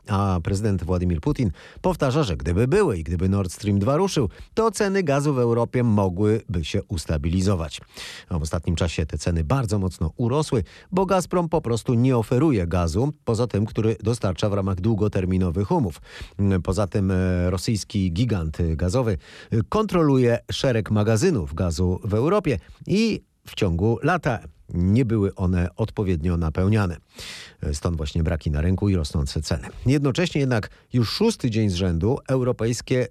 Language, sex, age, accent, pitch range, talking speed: Polish, male, 40-59, native, 90-125 Hz, 145 wpm